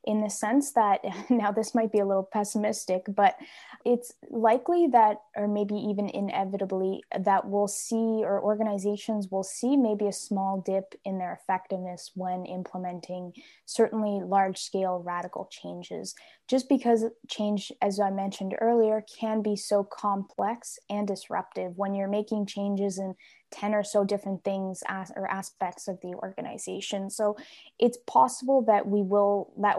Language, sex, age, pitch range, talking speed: English, female, 10-29, 195-215 Hz, 150 wpm